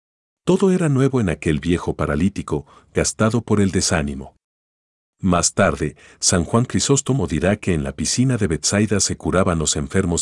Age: 50-69